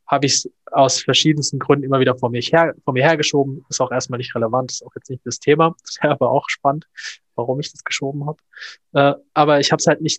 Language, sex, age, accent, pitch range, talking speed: German, male, 20-39, German, 130-150 Hz, 240 wpm